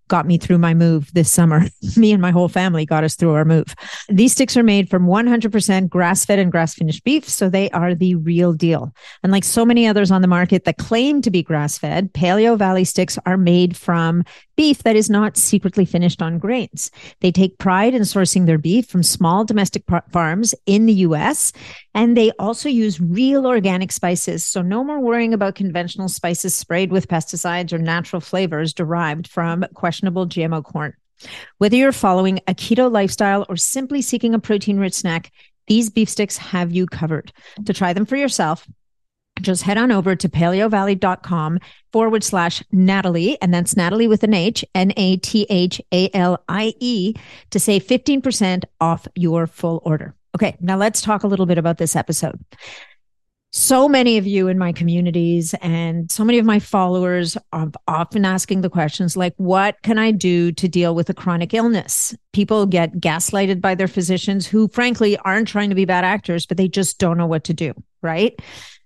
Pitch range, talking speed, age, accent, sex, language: 170-210 Hz, 180 wpm, 50-69, American, female, English